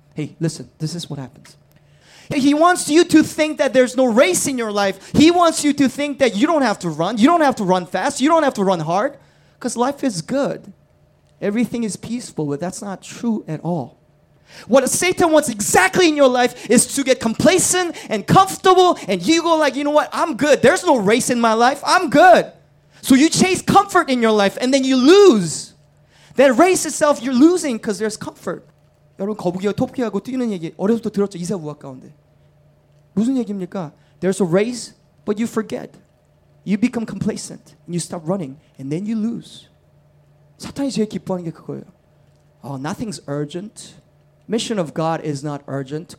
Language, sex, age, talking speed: English, male, 20-39, 190 wpm